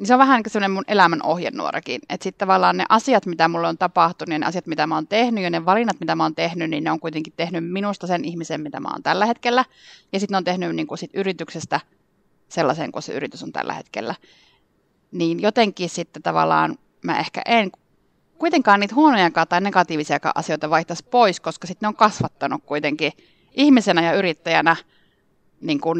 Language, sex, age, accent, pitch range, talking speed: Finnish, female, 30-49, native, 165-195 Hz, 195 wpm